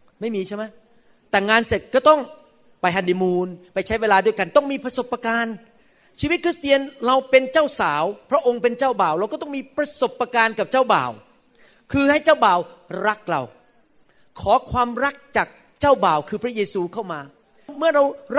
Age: 30-49